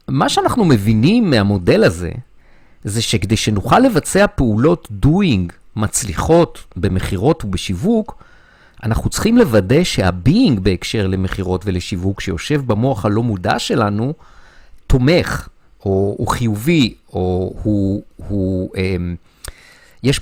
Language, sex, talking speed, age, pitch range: Hebrew, male, 100 wpm, 50-69, 95-130 Hz